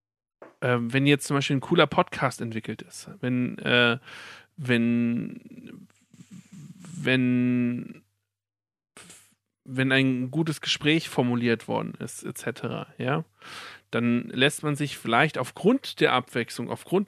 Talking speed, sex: 110 wpm, male